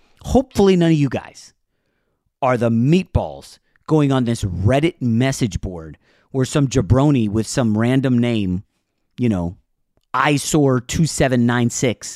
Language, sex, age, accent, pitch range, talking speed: English, male, 30-49, American, 115-155 Hz, 120 wpm